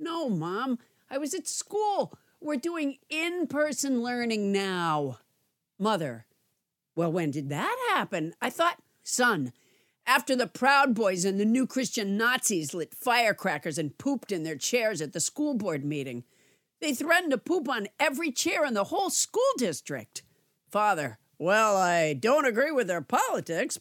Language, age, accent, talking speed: English, 50-69, American, 155 wpm